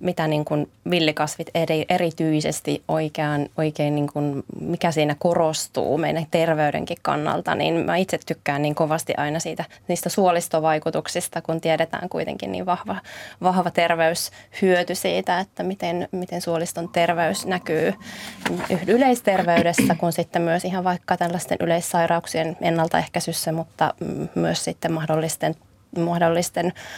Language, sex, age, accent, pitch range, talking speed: Finnish, female, 20-39, native, 160-180 Hz, 120 wpm